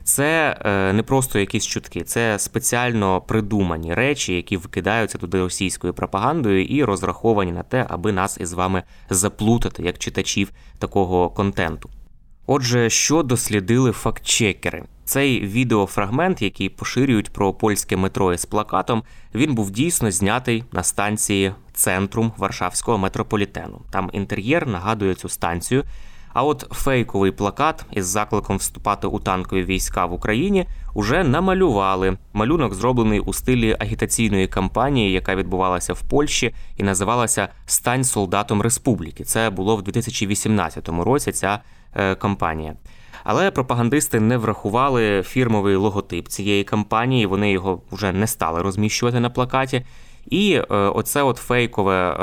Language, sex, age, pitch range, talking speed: Ukrainian, male, 20-39, 95-120 Hz, 125 wpm